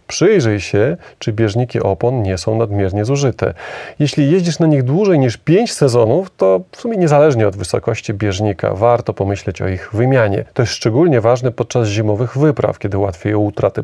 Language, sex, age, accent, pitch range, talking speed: Polish, male, 30-49, native, 100-135 Hz, 170 wpm